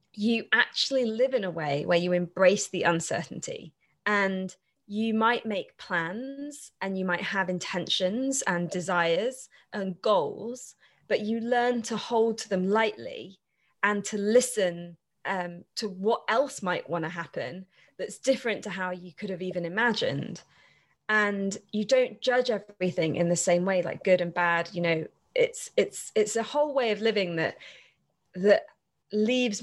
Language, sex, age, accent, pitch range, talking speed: English, female, 20-39, British, 175-225 Hz, 160 wpm